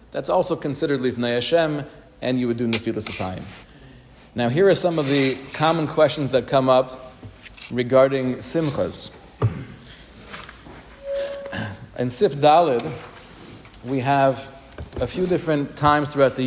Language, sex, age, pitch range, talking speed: English, male, 40-59, 130-165 Hz, 130 wpm